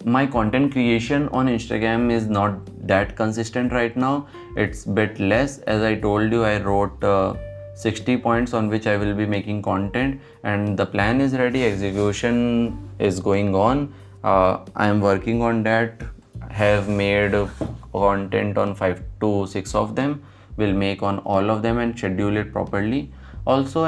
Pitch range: 100-115 Hz